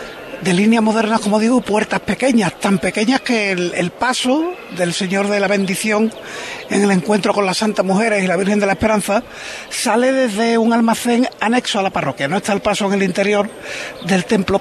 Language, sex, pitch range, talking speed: Spanish, male, 190-225 Hz, 195 wpm